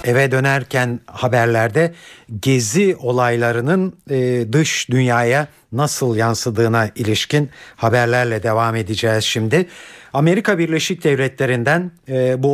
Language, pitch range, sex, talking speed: Turkish, 120-165 Hz, male, 85 wpm